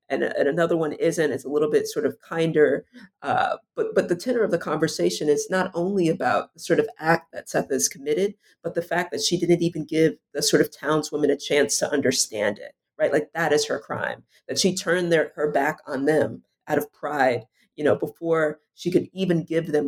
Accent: American